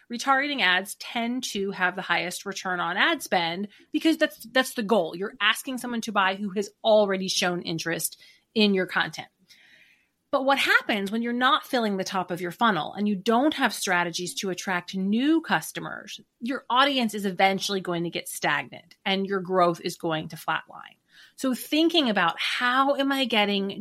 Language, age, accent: English, 30-49, American